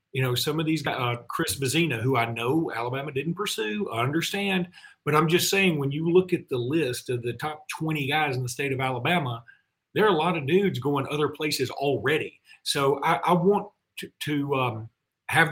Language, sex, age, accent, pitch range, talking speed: English, male, 40-59, American, 130-165 Hz, 215 wpm